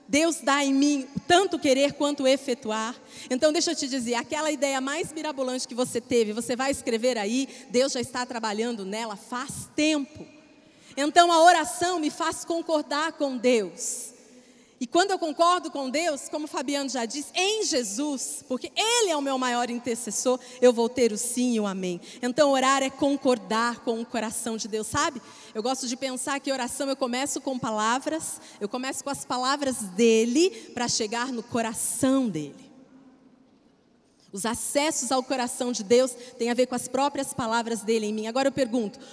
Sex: female